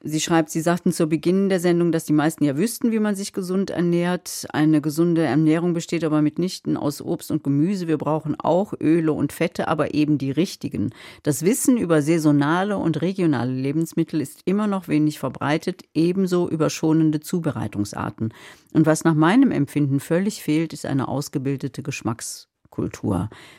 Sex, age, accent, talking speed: female, 40-59, German, 165 wpm